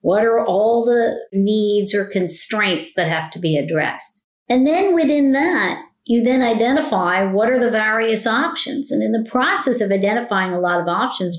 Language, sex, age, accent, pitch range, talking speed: English, female, 40-59, American, 185-240 Hz, 180 wpm